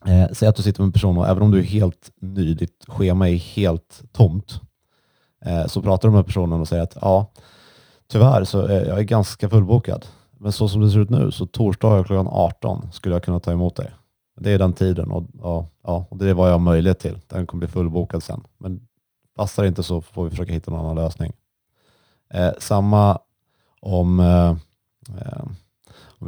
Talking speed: 190 wpm